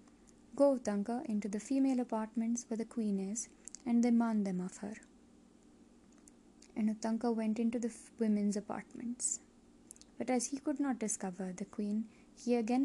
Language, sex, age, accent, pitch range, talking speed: English, female, 20-39, Indian, 215-255 Hz, 155 wpm